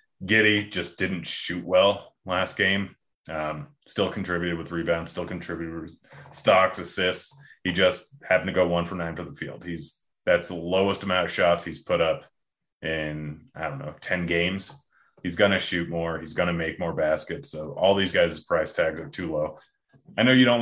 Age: 30-49